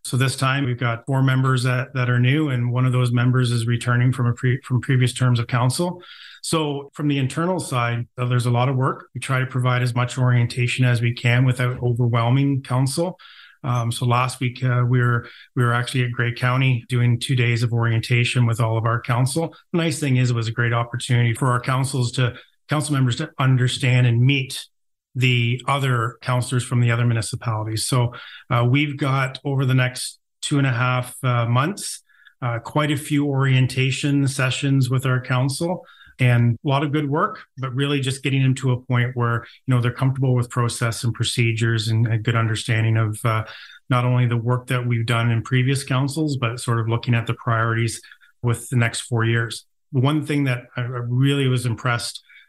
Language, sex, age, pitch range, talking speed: English, male, 30-49, 120-135 Hz, 205 wpm